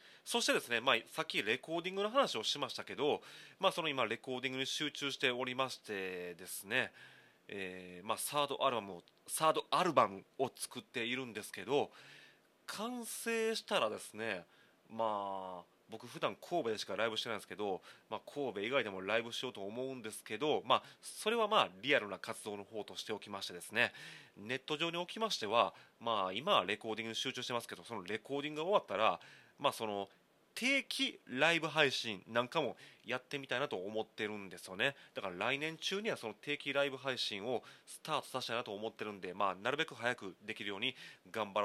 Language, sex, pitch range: Japanese, male, 105-150 Hz